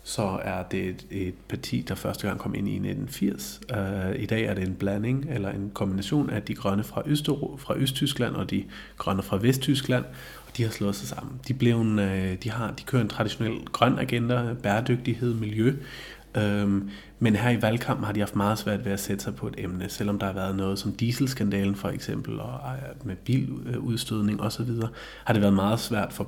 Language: Danish